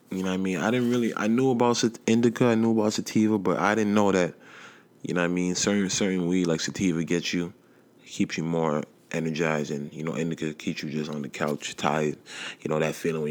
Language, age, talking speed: English, 20-39, 240 wpm